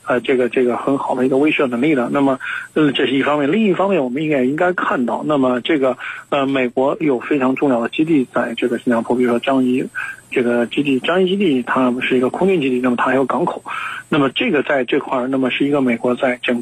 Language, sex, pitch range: Chinese, male, 125-135 Hz